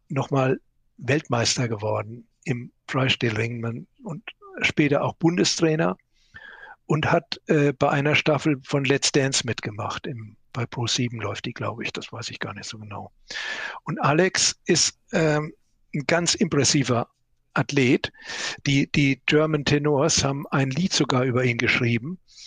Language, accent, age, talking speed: German, German, 60-79, 145 wpm